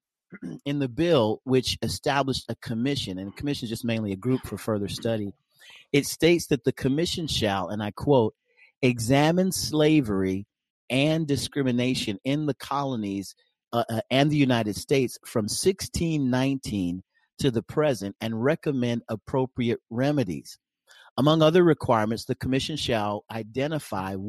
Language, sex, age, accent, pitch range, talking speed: English, male, 40-59, American, 110-145 Hz, 135 wpm